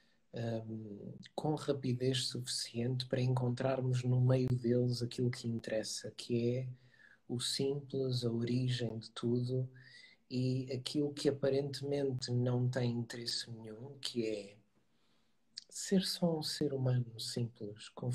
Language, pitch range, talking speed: Portuguese, 125-170 Hz, 120 wpm